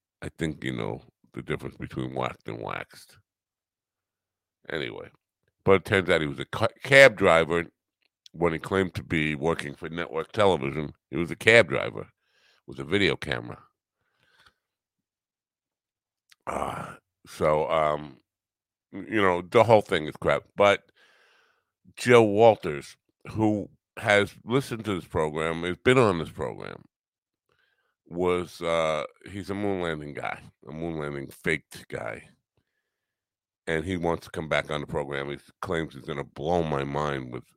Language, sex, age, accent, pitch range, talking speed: English, male, 50-69, American, 75-100 Hz, 145 wpm